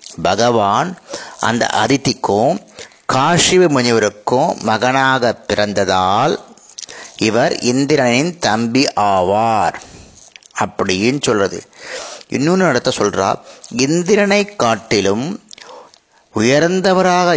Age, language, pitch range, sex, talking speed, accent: 30-49, Tamil, 110-160 Hz, male, 65 wpm, native